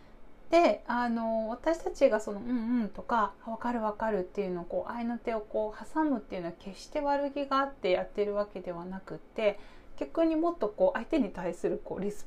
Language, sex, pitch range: Japanese, female, 185-280 Hz